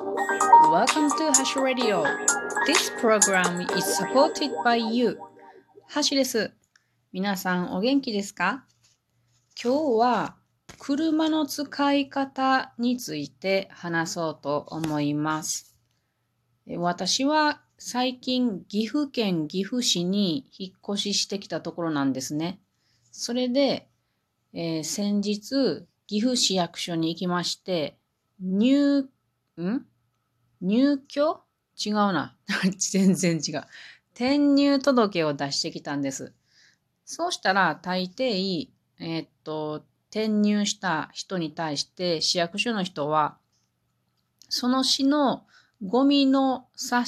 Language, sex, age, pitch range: Japanese, female, 30-49, 165-255 Hz